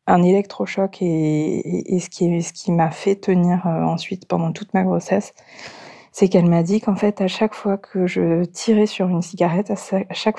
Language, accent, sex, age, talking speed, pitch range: French, French, female, 20-39, 220 wpm, 170-195 Hz